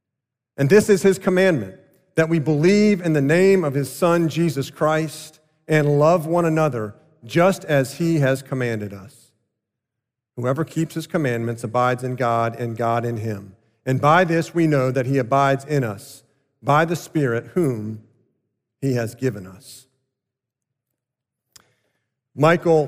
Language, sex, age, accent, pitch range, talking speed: English, male, 50-69, American, 130-180 Hz, 145 wpm